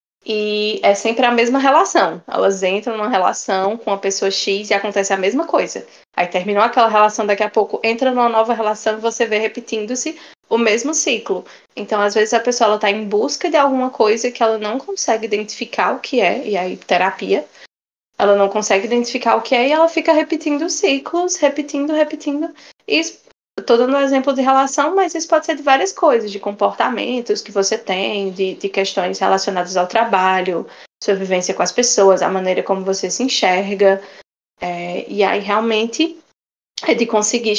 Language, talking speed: Portuguese, 185 wpm